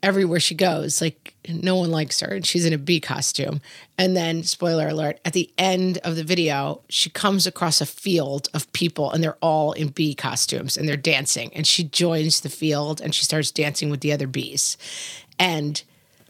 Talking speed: 200 wpm